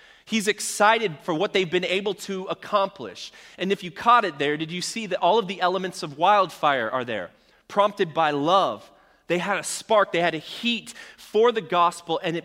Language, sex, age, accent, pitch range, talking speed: English, male, 30-49, American, 145-195 Hz, 205 wpm